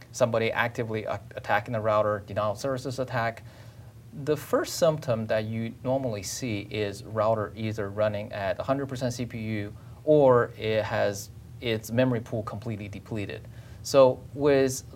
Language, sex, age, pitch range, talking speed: English, male, 30-49, 110-130 Hz, 130 wpm